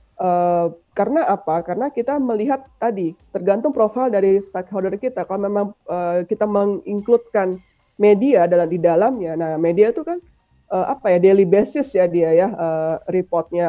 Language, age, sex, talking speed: English, 20-39, female, 155 wpm